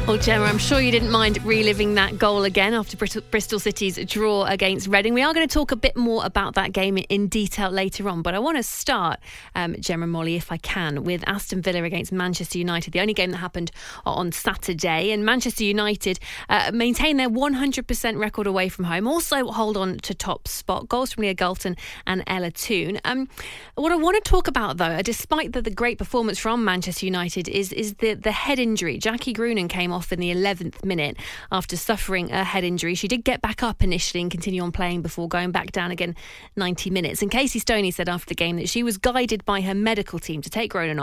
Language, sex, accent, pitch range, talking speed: English, female, British, 180-225 Hz, 220 wpm